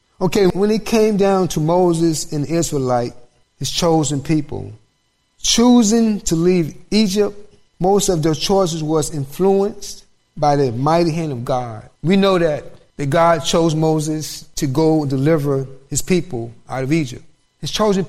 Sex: male